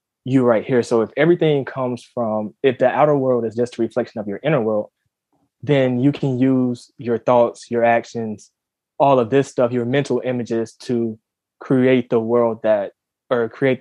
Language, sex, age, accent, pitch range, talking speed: English, male, 20-39, American, 115-140 Hz, 180 wpm